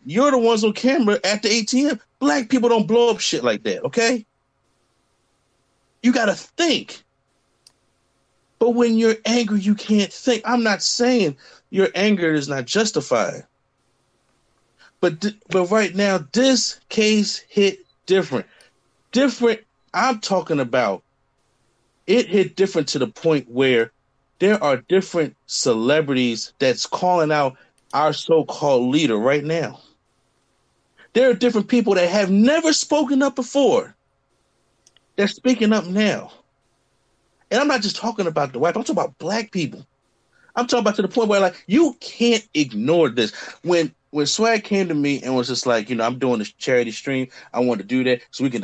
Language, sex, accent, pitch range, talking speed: English, male, American, 150-230 Hz, 160 wpm